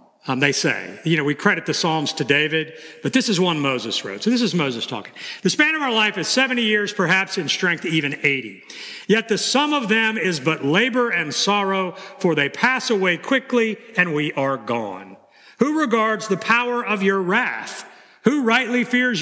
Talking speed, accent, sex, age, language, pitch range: 200 wpm, American, male, 50-69, English, 160-245 Hz